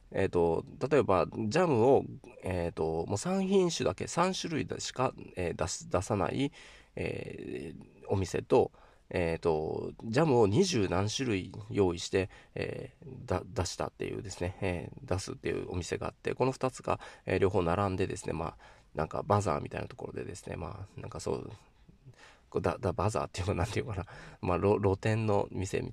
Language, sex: Japanese, male